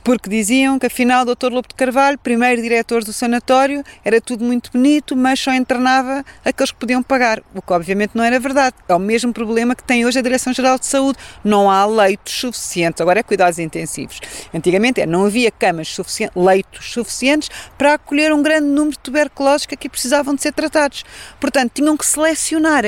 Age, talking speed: 40-59, 190 wpm